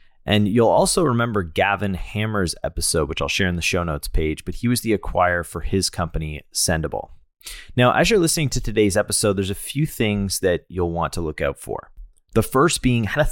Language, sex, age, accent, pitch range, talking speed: English, male, 30-49, American, 85-110 Hz, 210 wpm